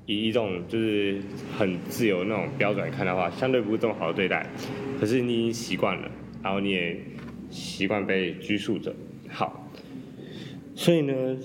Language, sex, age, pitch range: Chinese, male, 20-39, 95-115 Hz